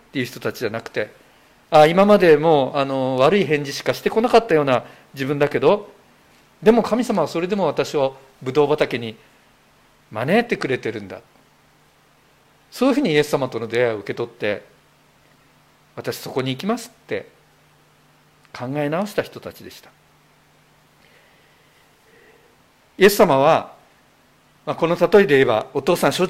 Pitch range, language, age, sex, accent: 140-225 Hz, Japanese, 50-69, male, native